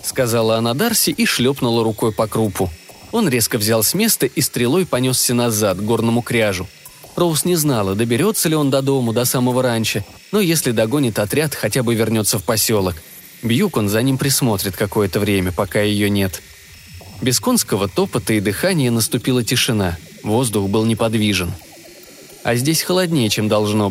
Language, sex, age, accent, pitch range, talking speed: Russian, male, 20-39, native, 105-140 Hz, 165 wpm